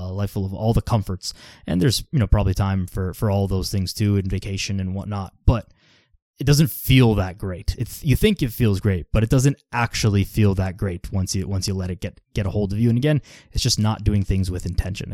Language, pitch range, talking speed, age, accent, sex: English, 95-115 Hz, 250 wpm, 20-39, American, male